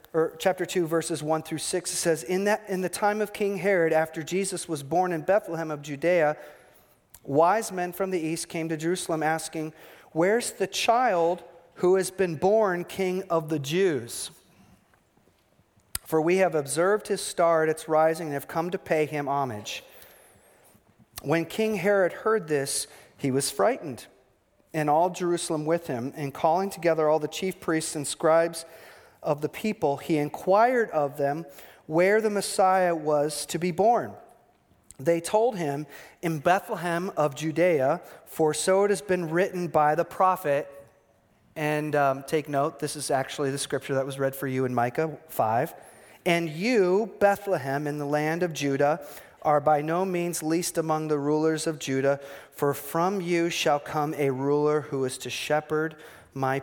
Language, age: English, 40-59